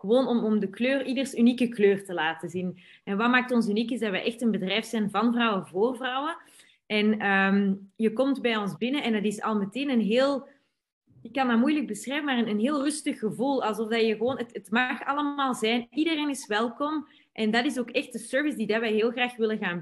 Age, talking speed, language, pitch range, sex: 20-39, 235 wpm, Dutch, 210-250 Hz, female